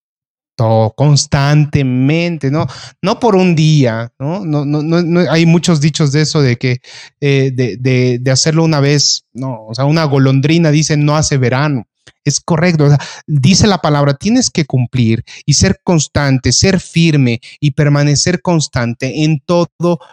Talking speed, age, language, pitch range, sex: 160 wpm, 30-49, Spanish, 135-180 Hz, male